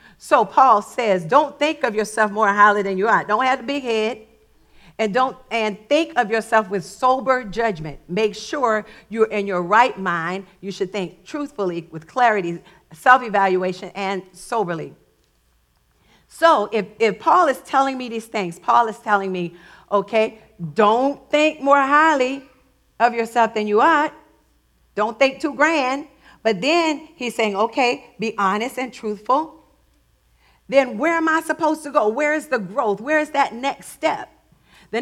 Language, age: English, 50-69